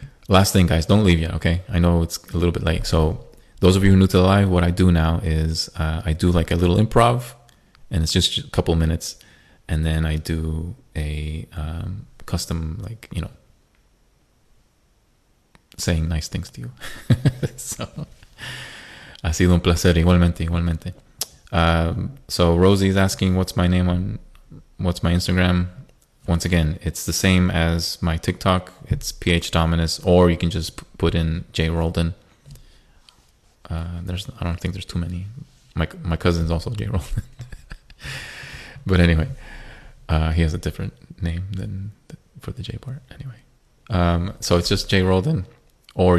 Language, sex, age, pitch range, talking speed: English, male, 20-39, 85-95 Hz, 160 wpm